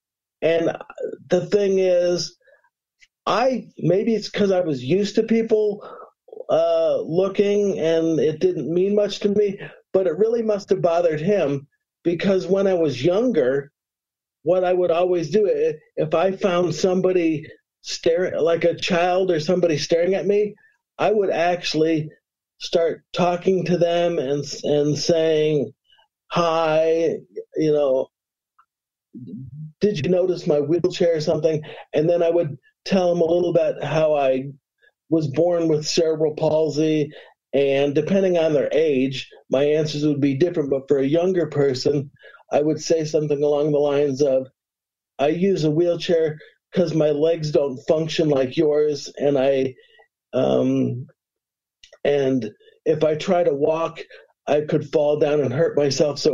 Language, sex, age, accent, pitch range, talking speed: English, male, 50-69, American, 150-190 Hz, 145 wpm